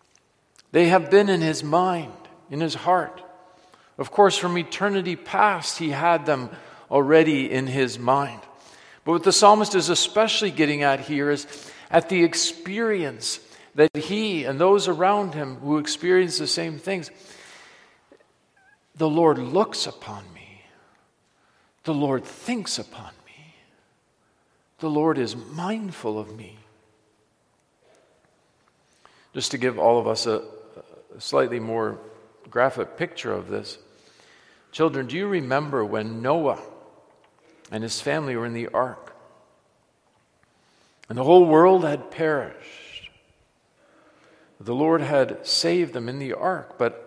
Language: English